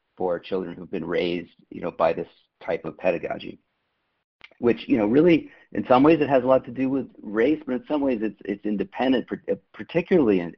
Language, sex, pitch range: English, male, 95-120 Hz